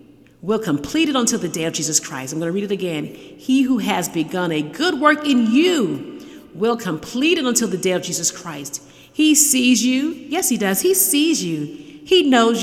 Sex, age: female, 40-59